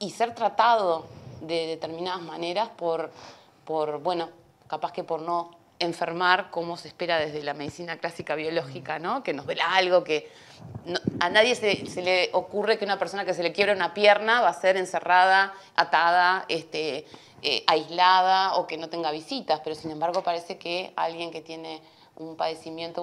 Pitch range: 160-195 Hz